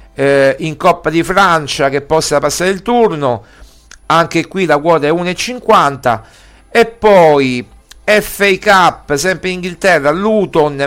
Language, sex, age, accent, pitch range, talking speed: Italian, male, 50-69, native, 145-185 Hz, 125 wpm